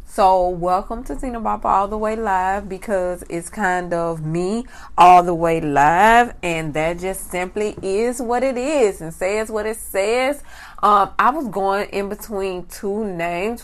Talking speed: 170 wpm